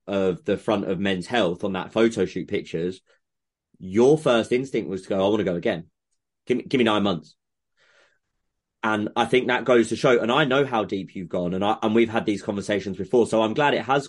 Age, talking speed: 20-39, 235 wpm